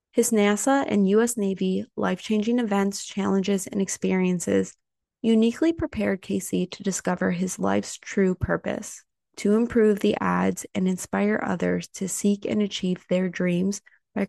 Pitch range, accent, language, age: 185-215 Hz, American, English, 20-39